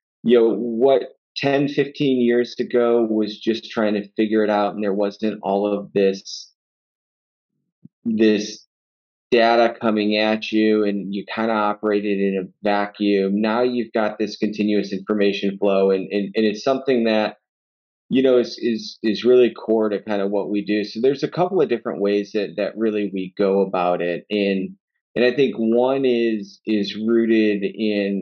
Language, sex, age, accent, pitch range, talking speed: English, male, 30-49, American, 100-115 Hz, 175 wpm